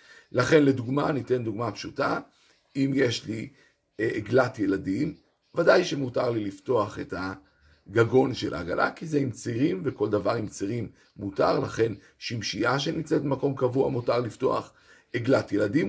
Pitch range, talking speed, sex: 120-155 Hz, 135 wpm, male